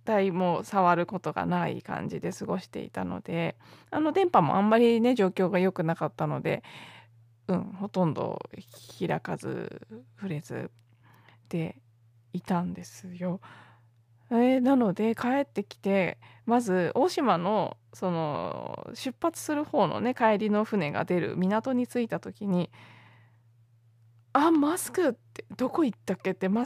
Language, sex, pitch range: Japanese, female, 170-240 Hz